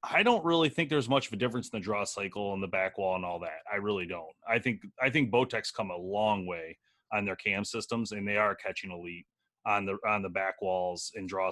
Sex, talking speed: male, 255 wpm